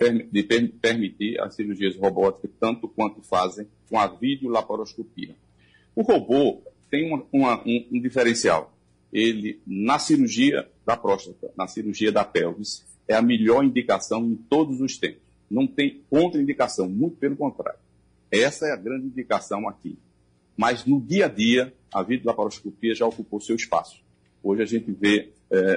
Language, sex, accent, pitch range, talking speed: Portuguese, male, Brazilian, 100-130 Hz, 145 wpm